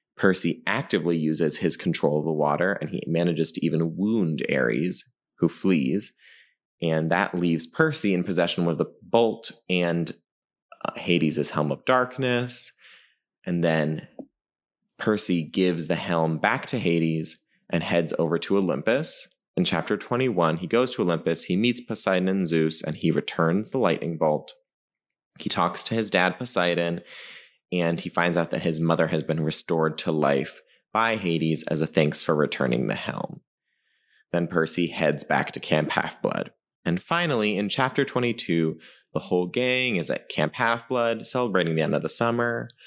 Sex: male